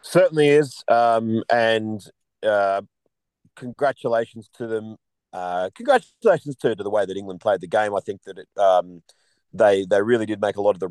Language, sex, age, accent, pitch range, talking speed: English, male, 40-59, Australian, 100-145 Hz, 180 wpm